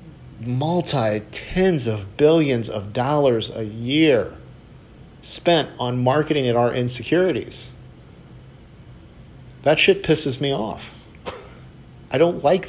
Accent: American